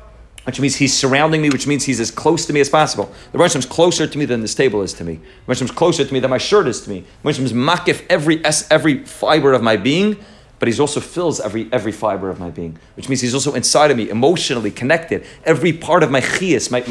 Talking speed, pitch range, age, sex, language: 255 wpm, 110-145 Hz, 30-49, male, English